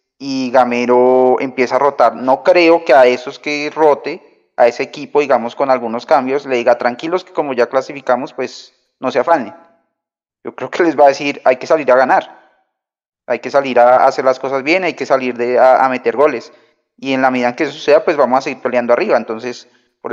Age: 30-49